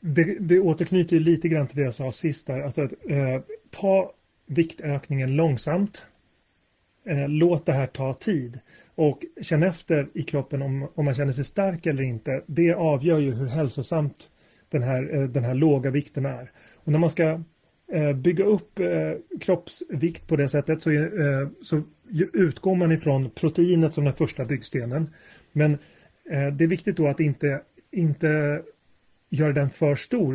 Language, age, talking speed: Swedish, 30-49, 170 wpm